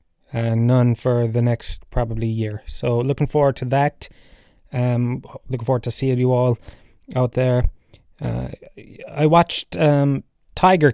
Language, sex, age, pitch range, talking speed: English, male, 20-39, 115-135 Hz, 145 wpm